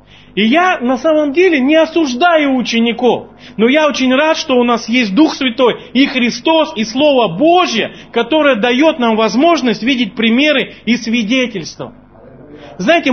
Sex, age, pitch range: male, 40-59, 200-275 Hz